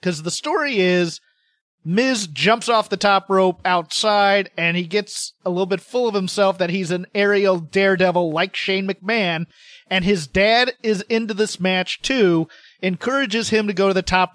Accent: American